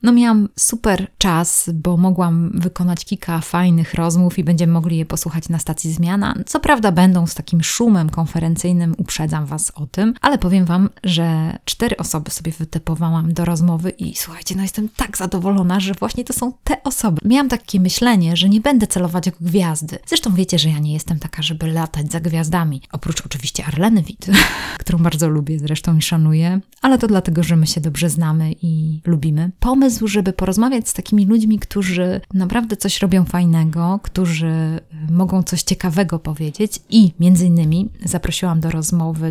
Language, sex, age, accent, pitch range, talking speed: Polish, female, 20-39, native, 165-195 Hz, 170 wpm